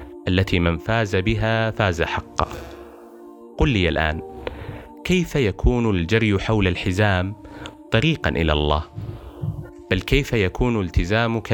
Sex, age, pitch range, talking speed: male, 30-49, 85-115 Hz, 110 wpm